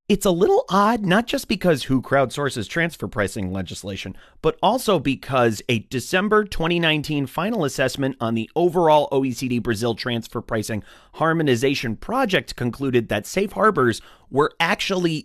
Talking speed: 140 wpm